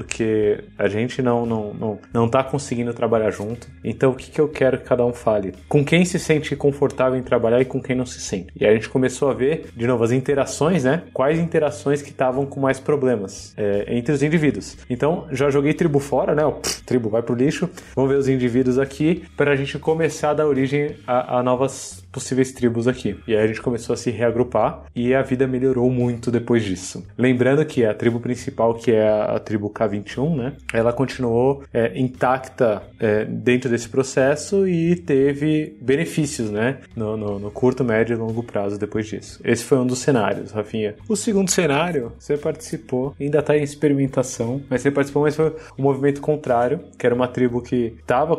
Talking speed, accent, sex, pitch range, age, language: 205 wpm, Brazilian, male, 115-140 Hz, 20-39, Portuguese